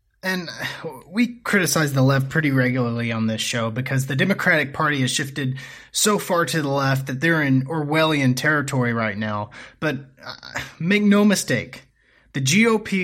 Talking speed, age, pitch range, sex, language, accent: 155 wpm, 30-49, 135-190 Hz, male, English, American